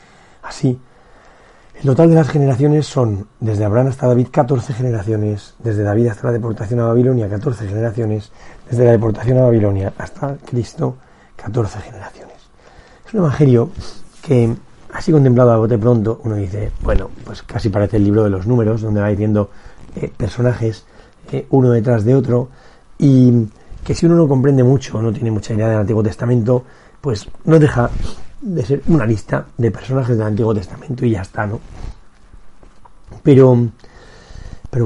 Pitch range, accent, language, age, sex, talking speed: 105-130 Hz, Spanish, Spanish, 40-59, male, 160 wpm